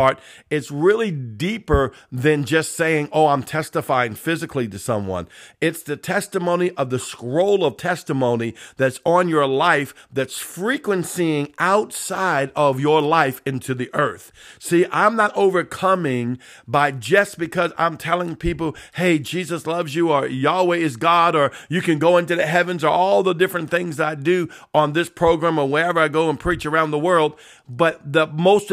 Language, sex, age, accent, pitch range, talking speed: English, male, 50-69, American, 145-180 Hz, 165 wpm